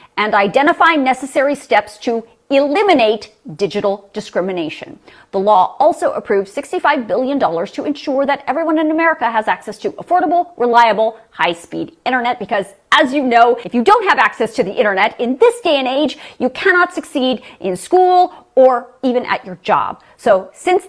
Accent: American